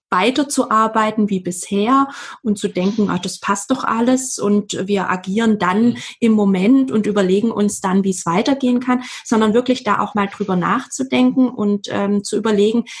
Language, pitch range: German, 210-255 Hz